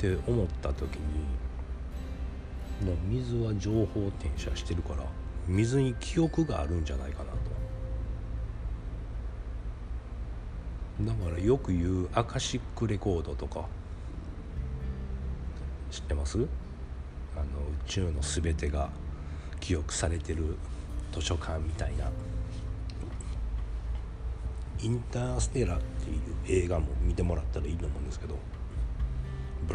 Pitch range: 65-90 Hz